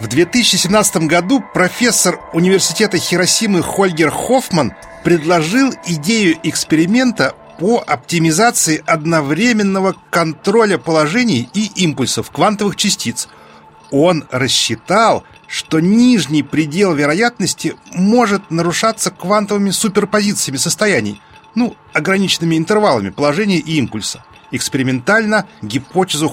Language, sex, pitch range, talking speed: Russian, male, 155-210 Hz, 90 wpm